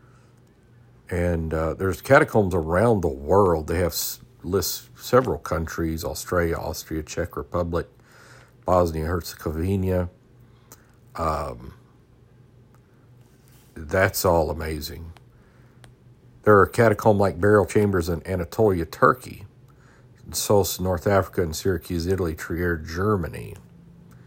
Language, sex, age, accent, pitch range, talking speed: English, male, 50-69, American, 85-120 Hz, 100 wpm